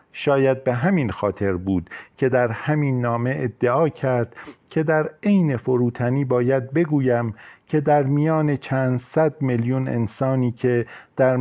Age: 50-69